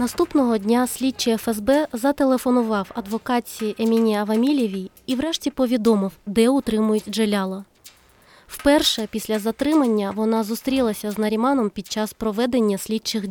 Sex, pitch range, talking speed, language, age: female, 215-255 Hz, 115 wpm, Ukrainian, 20-39